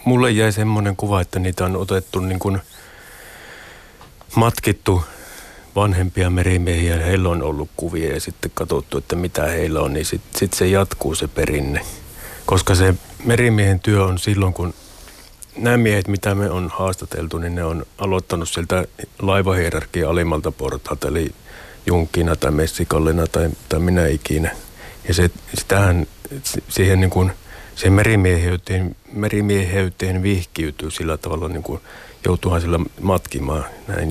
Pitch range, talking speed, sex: 85-100 Hz, 135 wpm, male